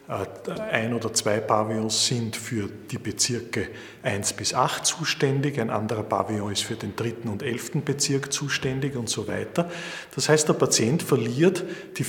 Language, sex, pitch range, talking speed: German, male, 110-145 Hz, 160 wpm